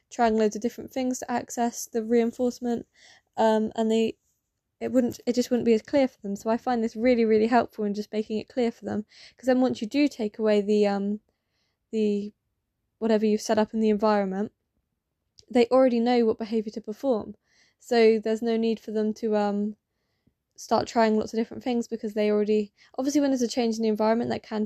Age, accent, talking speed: 10-29, British, 210 wpm